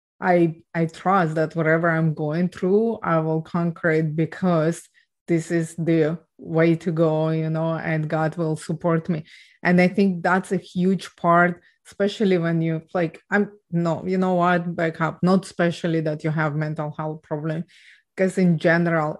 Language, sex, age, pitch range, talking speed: English, female, 30-49, 160-180 Hz, 170 wpm